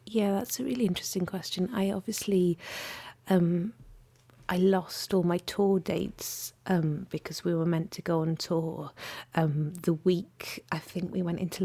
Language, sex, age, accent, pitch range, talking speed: English, female, 40-59, British, 165-205 Hz, 165 wpm